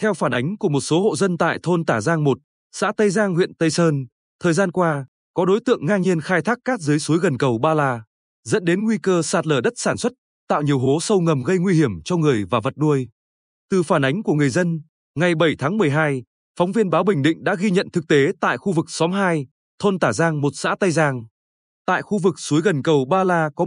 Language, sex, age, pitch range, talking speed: Vietnamese, male, 20-39, 145-200 Hz, 250 wpm